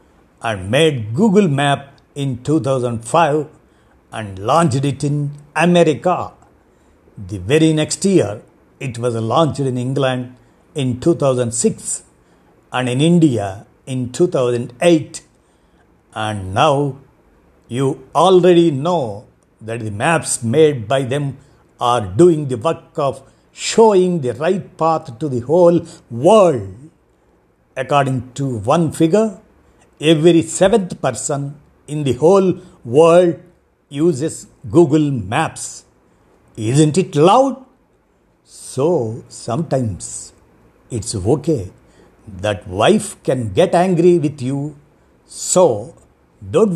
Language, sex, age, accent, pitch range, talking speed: Telugu, male, 50-69, native, 115-170 Hz, 105 wpm